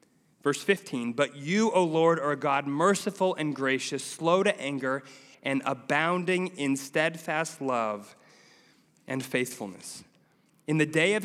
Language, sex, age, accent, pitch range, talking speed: English, male, 30-49, American, 130-180 Hz, 140 wpm